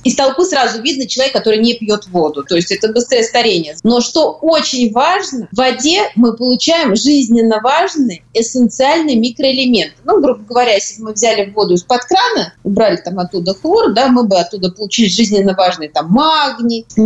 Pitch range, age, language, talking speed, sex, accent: 220-280 Hz, 30-49, Russian, 175 wpm, female, native